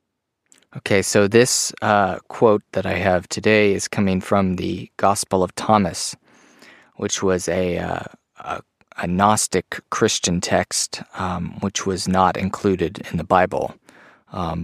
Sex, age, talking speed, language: male, 30-49, 140 wpm, English